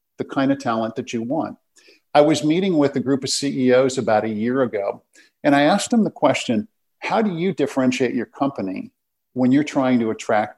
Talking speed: 205 wpm